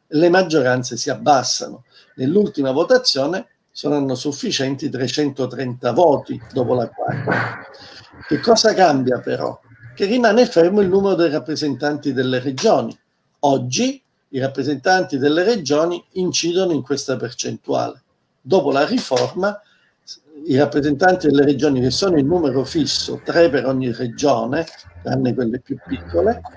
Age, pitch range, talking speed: 50-69, 130-170 Hz, 125 wpm